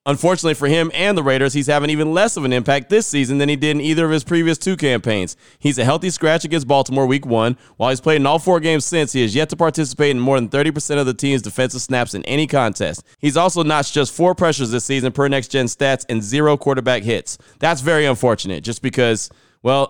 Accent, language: American, English